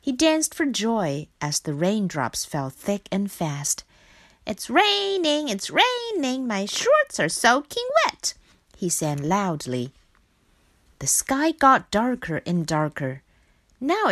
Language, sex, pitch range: Chinese, female, 150-255 Hz